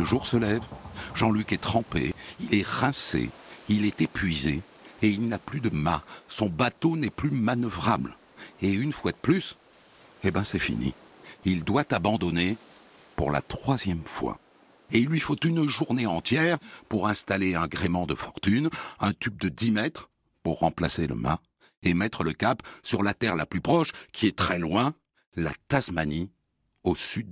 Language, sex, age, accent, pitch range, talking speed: French, male, 60-79, French, 85-140 Hz, 175 wpm